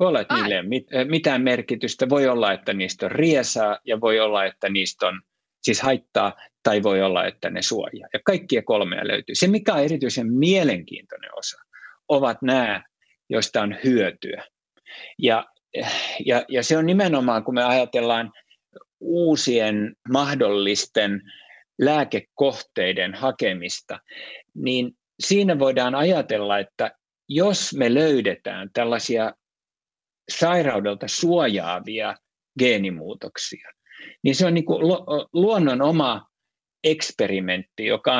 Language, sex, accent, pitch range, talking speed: Finnish, male, native, 110-160 Hz, 110 wpm